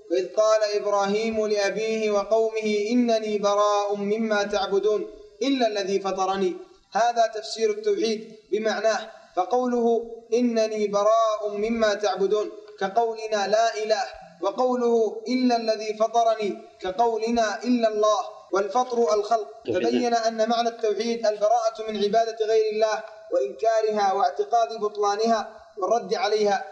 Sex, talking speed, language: male, 105 wpm, Arabic